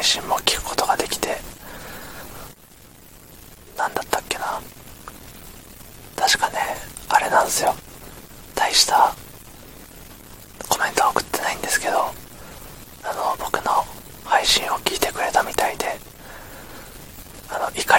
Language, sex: Japanese, male